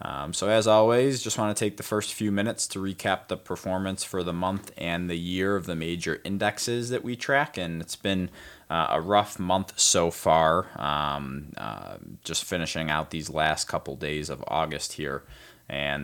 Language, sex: English, male